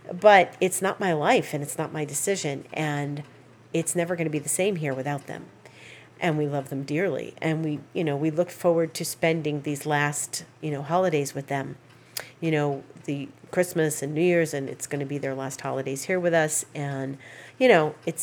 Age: 40-59